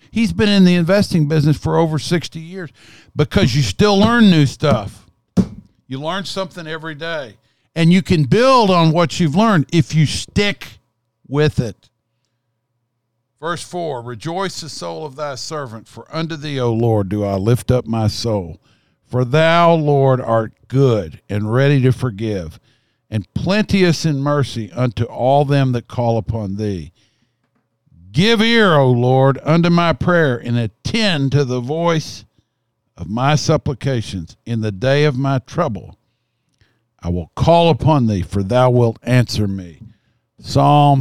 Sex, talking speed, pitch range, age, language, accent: male, 155 wpm, 115-150 Hz, 50-69, English, American